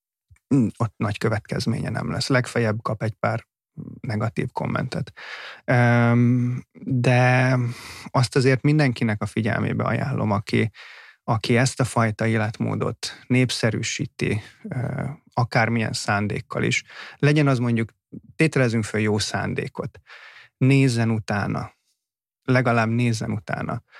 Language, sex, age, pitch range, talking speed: Hungarian, male, 30-49, 115-130 Hz, 100 wpm